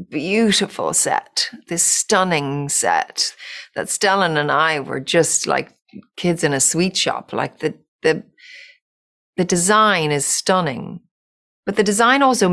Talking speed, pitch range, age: 135 wpm, 145-190 Hz, 40-59